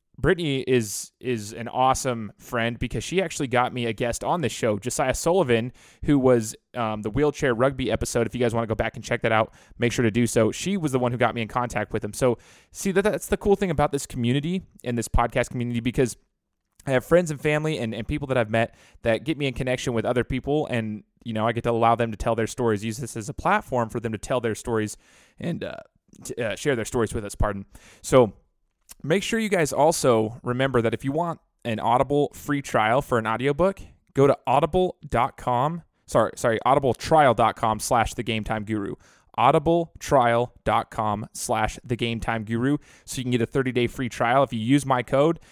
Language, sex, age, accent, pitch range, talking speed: English, male, 20-39, American, 115-135 Hz, 220 wpm